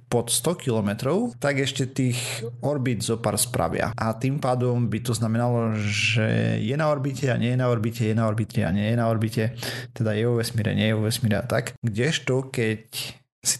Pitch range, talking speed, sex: 110-125 Hz, 205 wpm, male